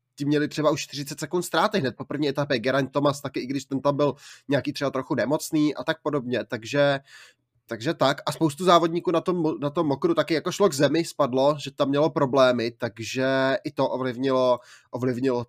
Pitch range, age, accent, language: 135-155 Hz, 20-39, native, Czech